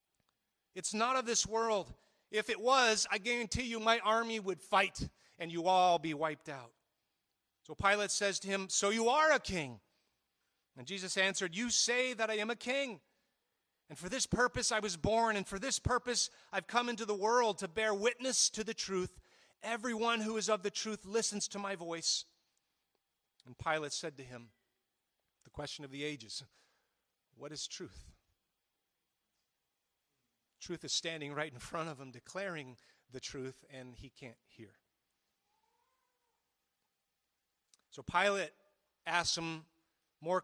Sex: male